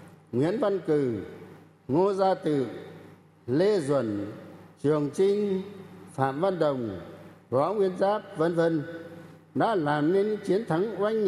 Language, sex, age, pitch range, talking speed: Vietnamese, male, 60-79, 150-195 Hz, 130 wpm